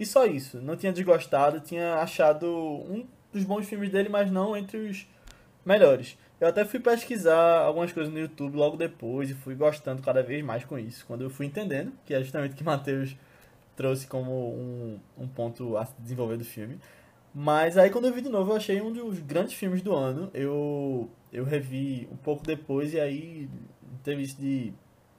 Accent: Brazilian